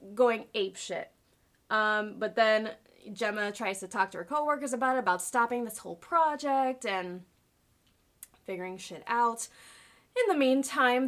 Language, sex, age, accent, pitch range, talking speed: English, female, 20-39, American, 195-255 Hz, 145 wpm